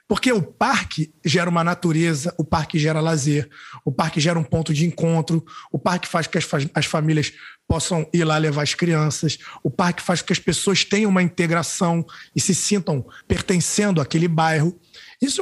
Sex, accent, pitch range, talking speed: male, Brazilian, 155-205 Hz, 185 wpm